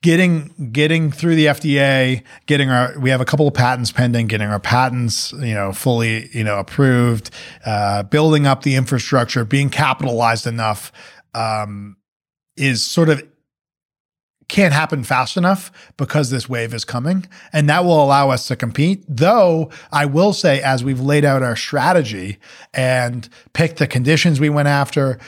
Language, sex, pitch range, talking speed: English, male, 125-160 Hz, 160 wpm